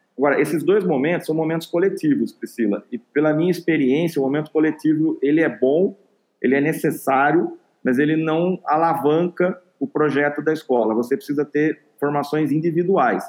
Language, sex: Portuguese, male